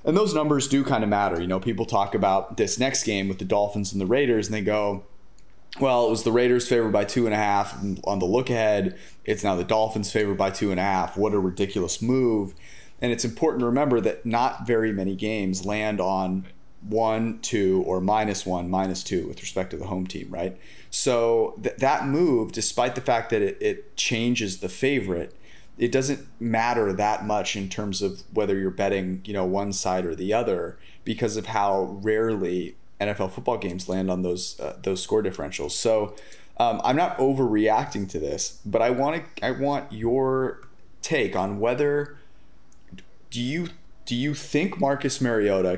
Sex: male